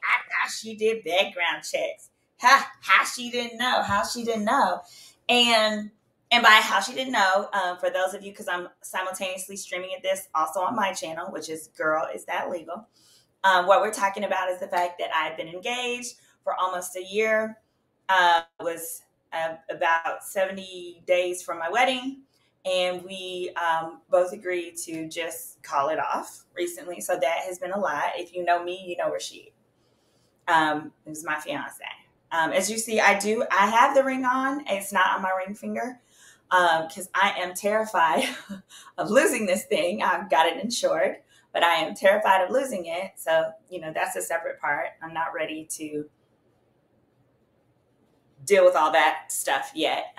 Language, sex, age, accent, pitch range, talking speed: English, female, 20-39, American, 165-225 Hz, 185 wpm